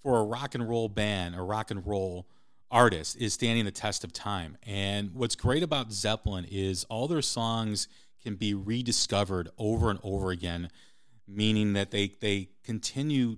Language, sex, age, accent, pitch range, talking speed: English, male, 40-59, American, 95-120 Hz, 170 wpm